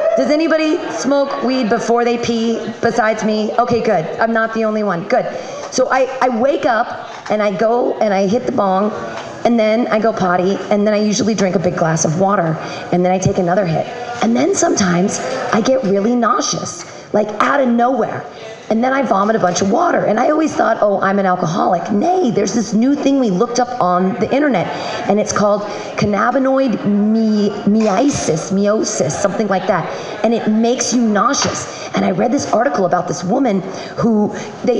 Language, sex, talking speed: English, female, 195 wpm